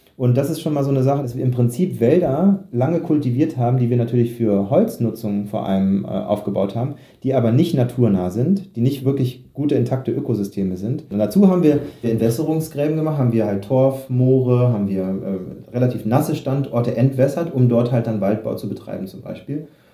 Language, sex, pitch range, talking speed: German, male, 110-135 Hz, 195 wpm